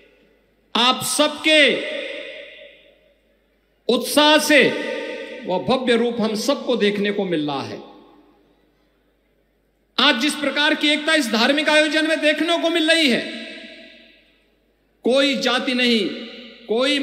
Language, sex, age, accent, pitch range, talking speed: Hindi, male, 50-69, native, 230-310 Hz, 110 wpm